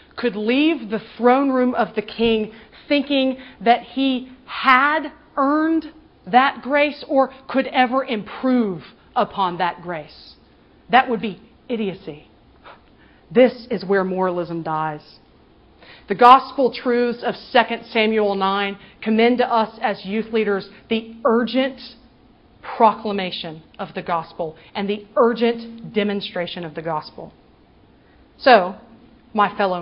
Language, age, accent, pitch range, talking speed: English, 40-59, American, 190-245 Hz, 120 wpm